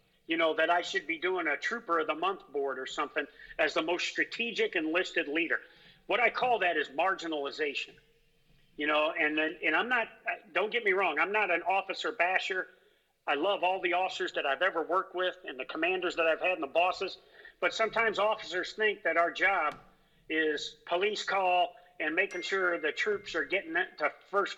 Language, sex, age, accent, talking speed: English, male, 40-59, American, 195 wpm